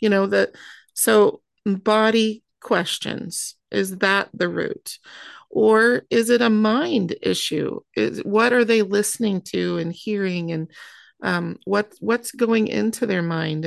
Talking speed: 140 wpm